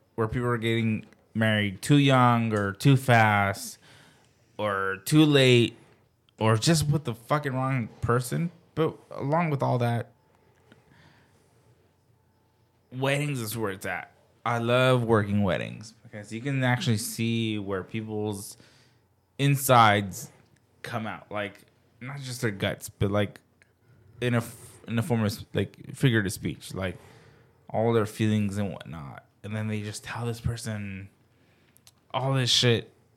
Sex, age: male, 20-39